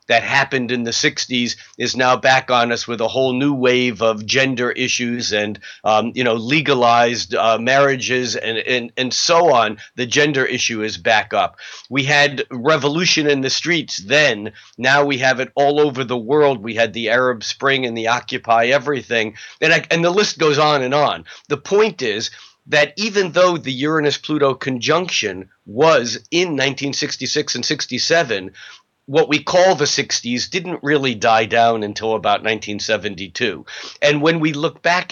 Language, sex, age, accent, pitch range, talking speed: English, male, 40-59, American, 120-150 Hz, 170 wpm